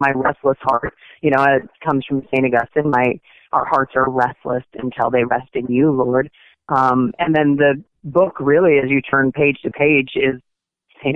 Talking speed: 190 wpm